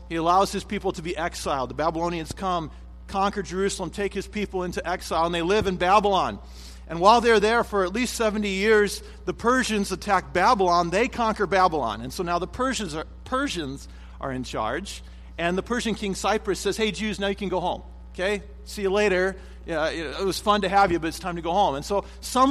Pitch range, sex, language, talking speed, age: 170-215 Hz, male, English, 210 wpm, 40-59